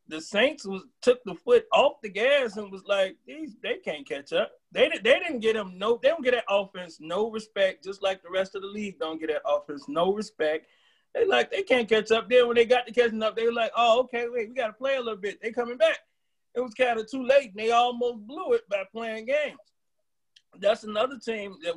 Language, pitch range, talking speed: English, 180-245 Hz, 250 wpm